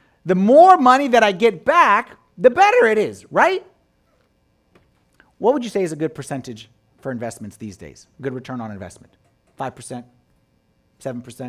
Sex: male